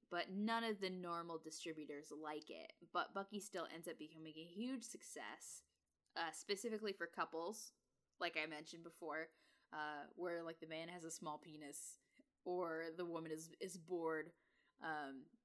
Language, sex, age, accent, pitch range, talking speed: English, female, 10-29, American, 160-215 Hz, 160 wpm